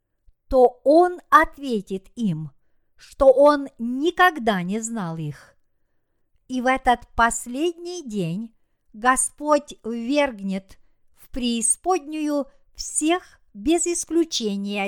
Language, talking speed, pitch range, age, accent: Russian, 90 wpm, 215-300 Hz, 50-69, native